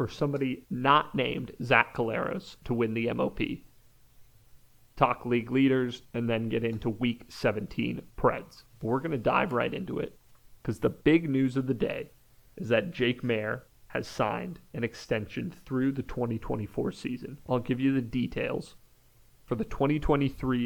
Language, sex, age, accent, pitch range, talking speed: English, male, 30-49, American, 115-130 Hz, 160 wpm